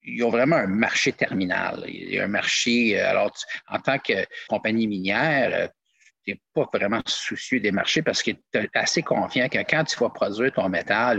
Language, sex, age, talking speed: French, male, 50-69, 205 wpm